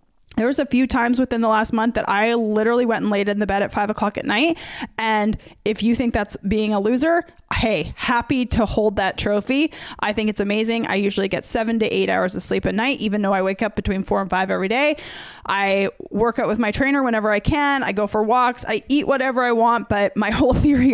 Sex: female